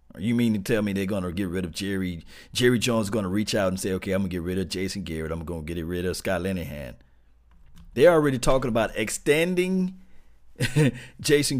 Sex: male